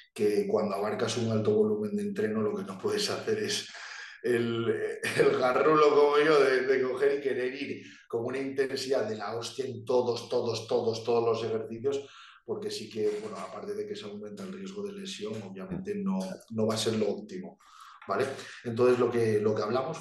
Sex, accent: male, Spanish